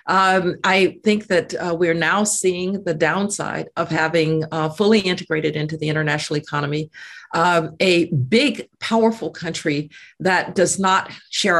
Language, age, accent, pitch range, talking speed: English, 50-69, American, 160-200 Hz, 145 wpm